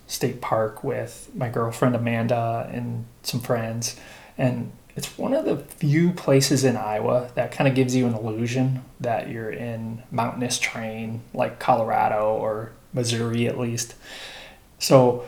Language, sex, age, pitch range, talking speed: English, male, 20-39, 115-135 Hz, 145 wpm